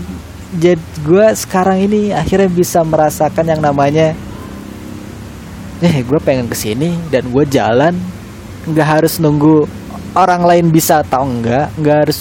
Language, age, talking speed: Indonesian, 20-39, 130 wpm